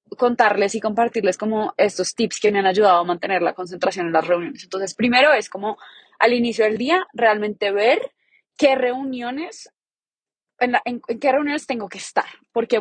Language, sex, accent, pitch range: Spanish, female, Colombian, 200-245 Hz